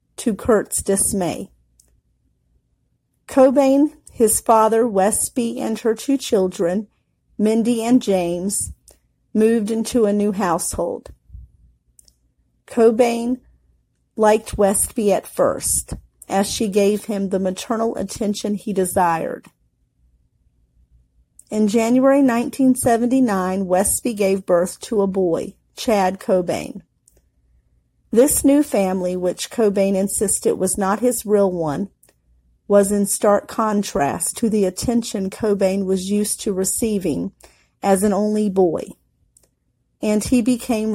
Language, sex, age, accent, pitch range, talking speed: English, female, 40-59, American, 180-225 Hz, 110 wpm